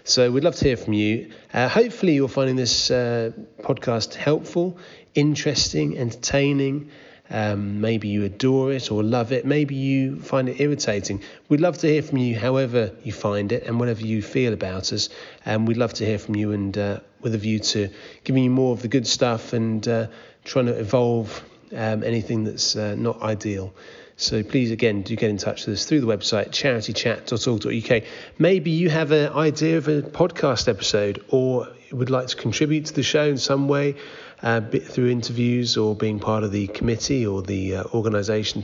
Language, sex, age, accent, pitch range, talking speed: English, male, 30-49, British, 110-135 Hz, 190 wpm